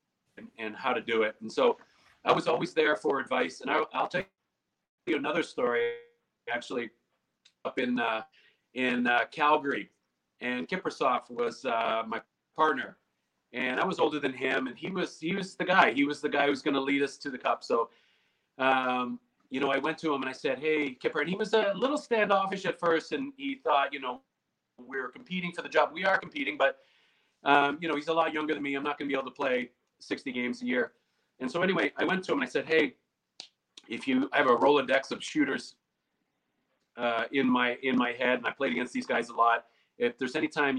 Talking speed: 225 wpm